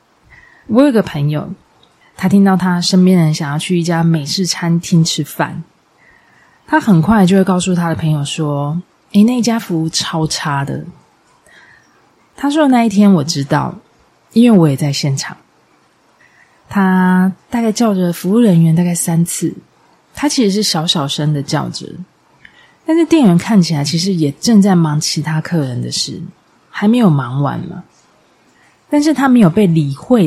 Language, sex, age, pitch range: Chinese, female, 20-39, 155-210 Hz